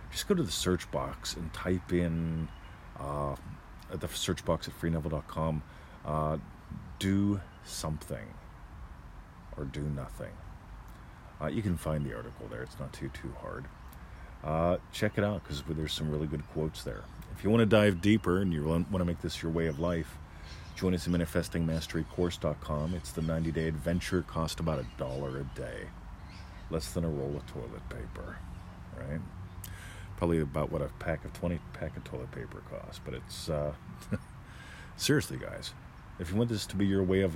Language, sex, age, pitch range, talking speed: English, male, 40-59, 80-95 Hz, 175 wpm